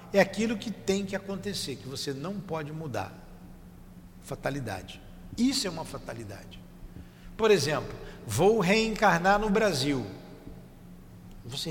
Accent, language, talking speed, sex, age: Brazilian, Portuguese, 120 wpm, male, 60-79